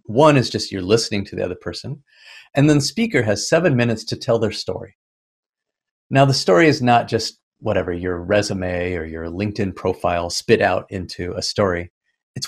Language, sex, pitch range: English, male, 105-160 Hz